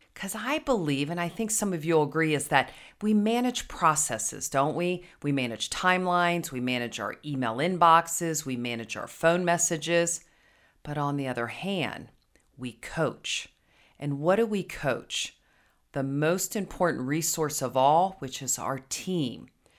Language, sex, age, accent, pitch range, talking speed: English, female, 40-59, American, 135-185 Hz, 160 wpm